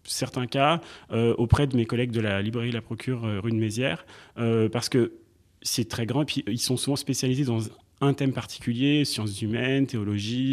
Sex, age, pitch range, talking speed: male, 30-49, 115-135 Hz, 200 wpm